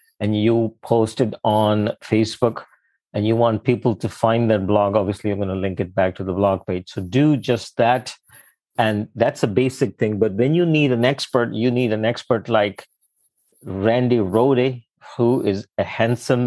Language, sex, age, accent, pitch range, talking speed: English, male, 50-69, Indian, 110-130 Hz, 185 wpm